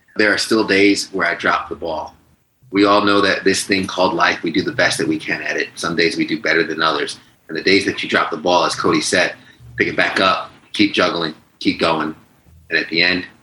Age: 30-49